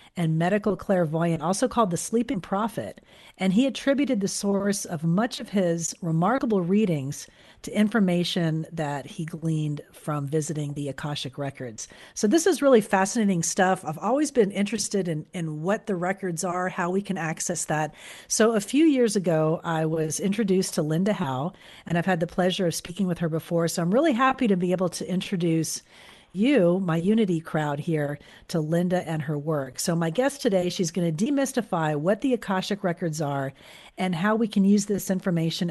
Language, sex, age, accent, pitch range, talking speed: English, female, 40-59, American, 160-205 Hz, 185 wpm